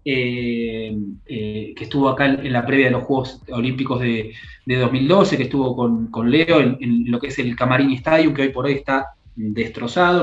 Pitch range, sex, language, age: 120-160 Hz, male, Spanish, 20-39